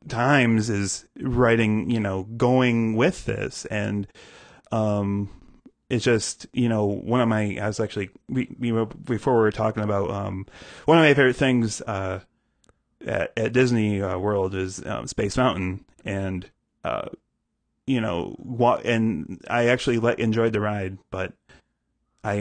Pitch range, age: 100-120 Hz, 30-49